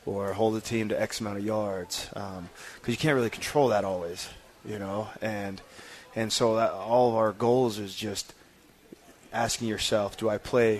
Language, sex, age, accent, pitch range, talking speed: English, male, 20-39, American, 105-120 Hz, 190 wpm